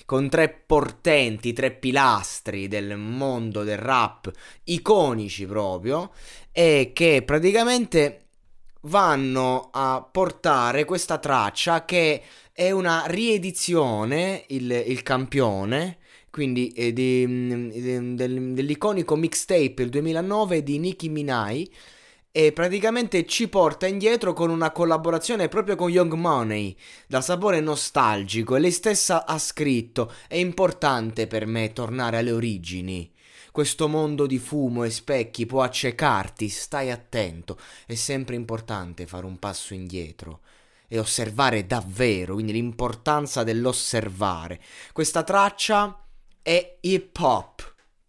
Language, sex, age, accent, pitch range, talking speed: Italian, male, 20-39, native, 115-165 Hz, 115 wpm